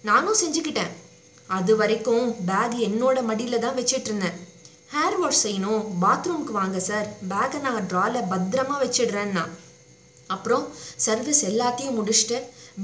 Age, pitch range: 20-39, 200-260 Hz